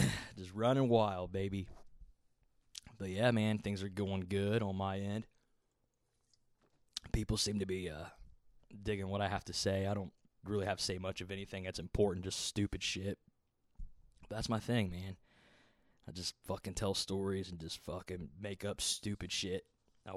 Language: English